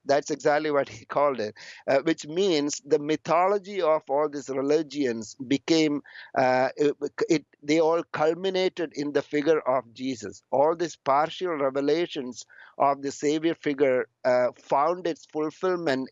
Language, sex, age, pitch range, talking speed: English, male, 50-69, 135-165 Hz, 145 wpm